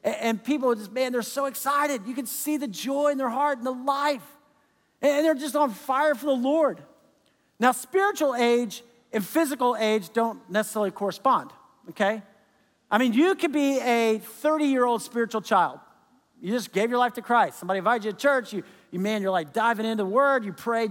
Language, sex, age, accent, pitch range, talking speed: English, male, 50-69, American, 210-275 Hz, 200 wpm